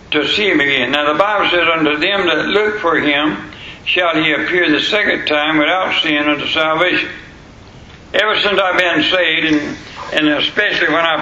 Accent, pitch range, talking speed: American, 155-175 Hz, 180 wpm